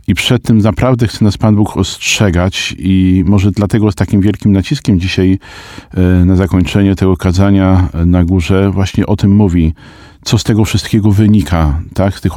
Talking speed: 170 wpm